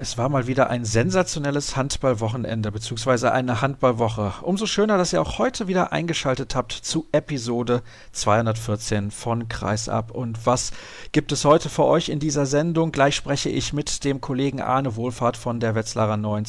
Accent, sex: German, male